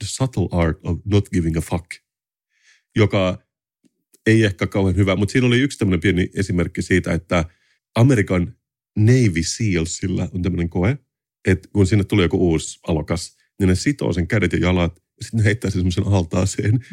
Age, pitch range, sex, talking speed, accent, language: 30-49, 90-110 Hz, male, 170 wpm, native, Finnish